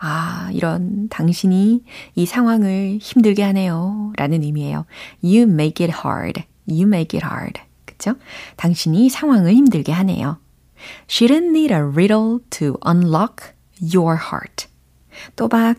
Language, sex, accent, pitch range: Korean, female, native, 160-230 Hz